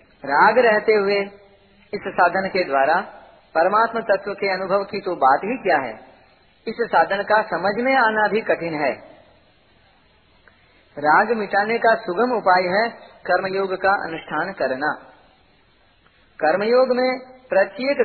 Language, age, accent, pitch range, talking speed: Hindi, 40-59, native, 175-235 Hz, 130 wpm